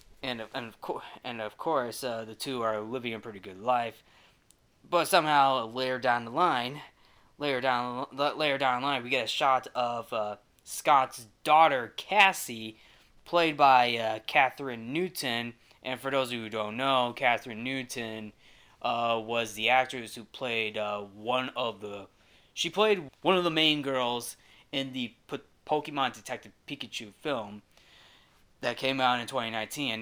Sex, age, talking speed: male, 20-39, 170 wpm